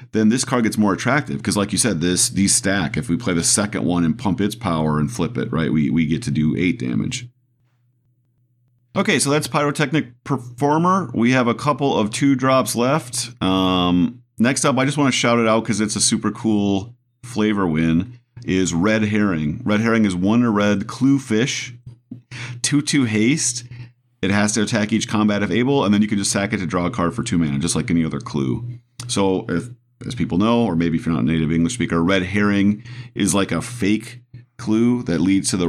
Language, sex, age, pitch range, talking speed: English, male, 40-59, 90-125 Hz, 220 wpm